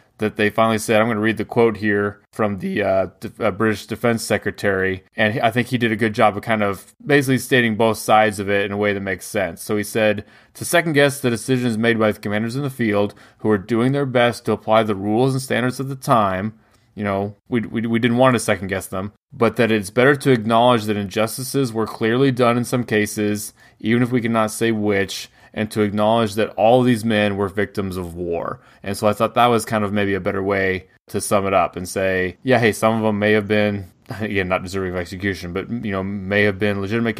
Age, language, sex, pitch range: 20-39, English, male, 100-115 Hz